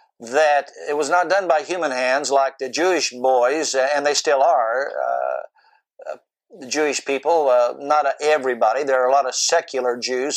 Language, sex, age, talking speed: English, male, 60-79, 180 wpm